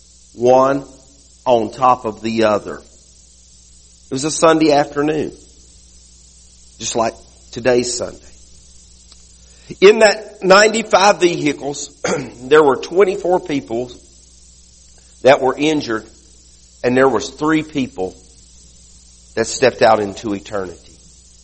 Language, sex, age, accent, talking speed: English, male, 50-69, American, 100 wpm